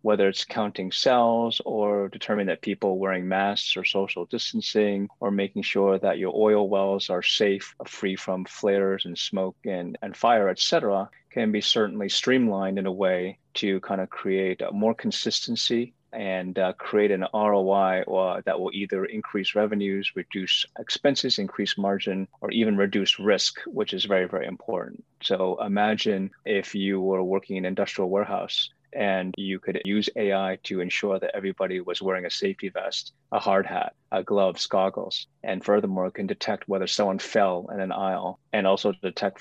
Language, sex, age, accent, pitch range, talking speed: English, male, 30-49, American, 95-105 Hz, 170 wpm